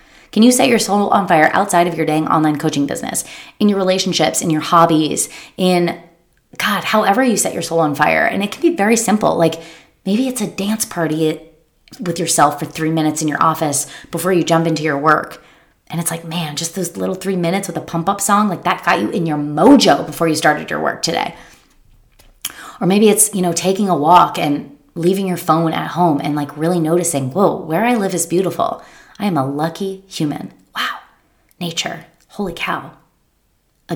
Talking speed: 205 wpm